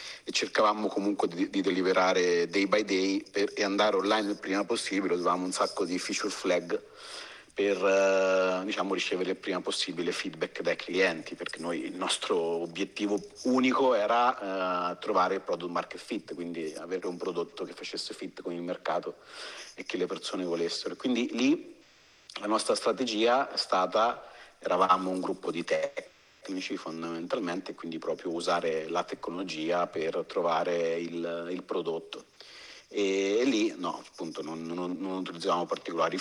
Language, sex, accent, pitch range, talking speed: Italian, male, native, 85-125 Hz, 155 wpm